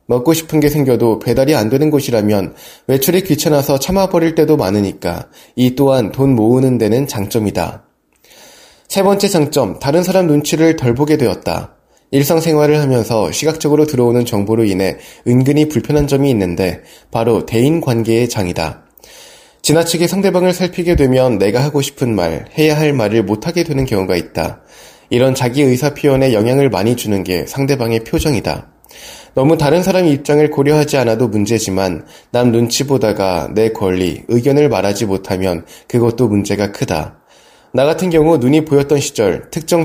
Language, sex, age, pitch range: Korean, male, 20-39, 110-150 Hz